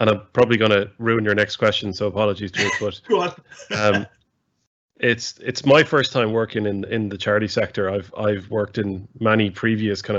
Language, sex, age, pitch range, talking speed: English, male, 20-39, 100-115 Hz, 195 wpm